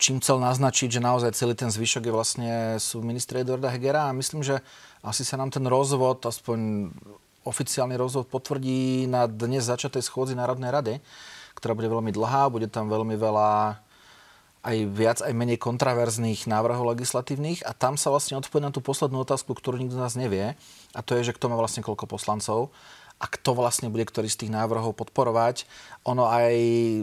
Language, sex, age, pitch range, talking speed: Slovak, male, 30-49, 115-135 Hz, 180 wpm